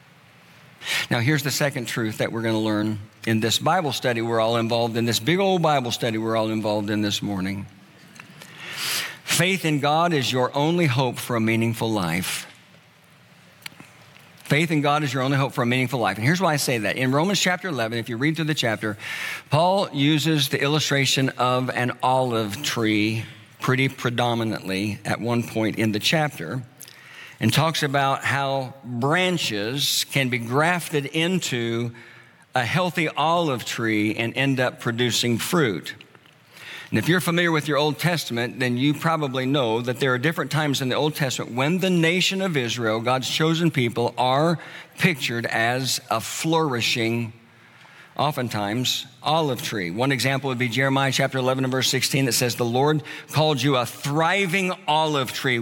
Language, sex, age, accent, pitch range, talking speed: English, male, 50-69, American, 115-155 Hz, 170 wpm